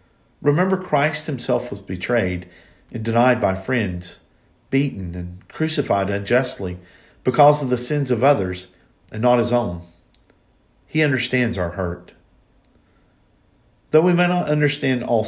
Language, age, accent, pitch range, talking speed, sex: English, 50-69, American, 95-145 Hz, 130 wpm, male